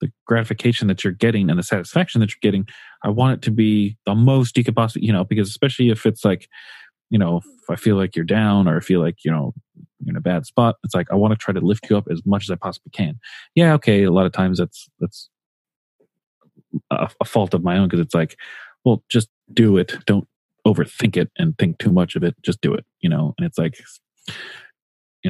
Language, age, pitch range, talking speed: English, 30-49, 90-110 Hz, 240 wpm